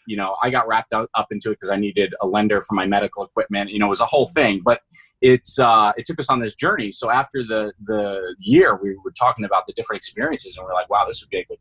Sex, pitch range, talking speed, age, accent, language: male, 95-115 Hz, 280 wpm, 20-39, American, English